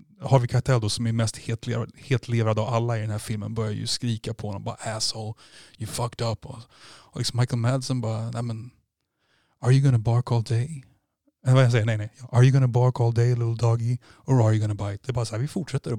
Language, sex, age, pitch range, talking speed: Swedish, male, 30-49, 115-135 Hz, 245 wpm